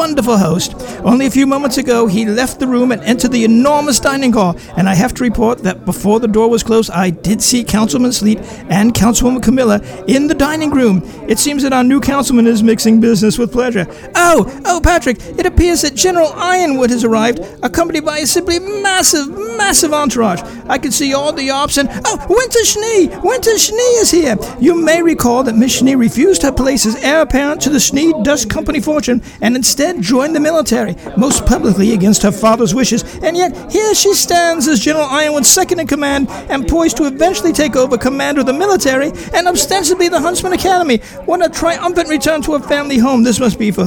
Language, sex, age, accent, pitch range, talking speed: English, male, 50-69, American, 230-315 Hz, 205 wpm